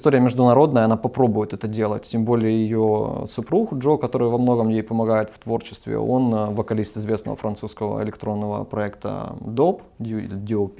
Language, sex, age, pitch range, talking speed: Russian, male, 20-39, 110-135 Hz, 145 wpm